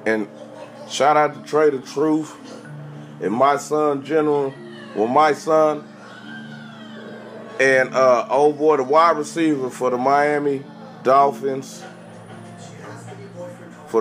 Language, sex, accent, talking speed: English, male, American, 110 wpm